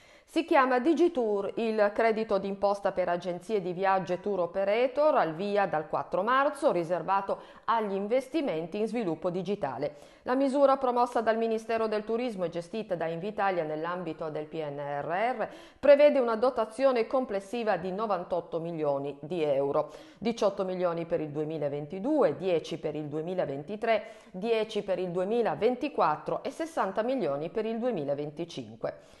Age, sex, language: 50-69, female, Italian